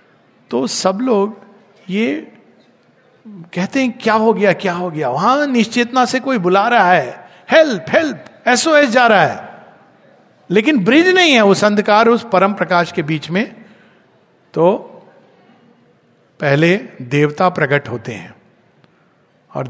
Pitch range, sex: 160-230 Hz, male